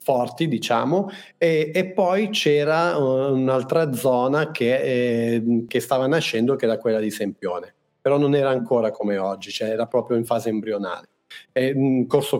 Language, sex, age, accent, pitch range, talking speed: Italian, male, 40-59, native, 115-145 Hz, 150 wpm